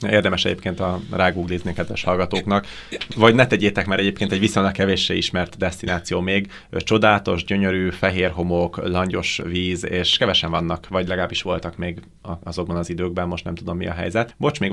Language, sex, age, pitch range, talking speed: Hungarian, male, 30-49, 85-95 Hz, 165 wpm